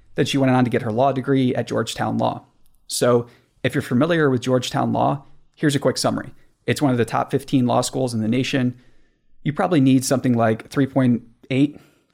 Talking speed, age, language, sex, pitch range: 200 wpm, 30-49, English, male, 120-135 Hz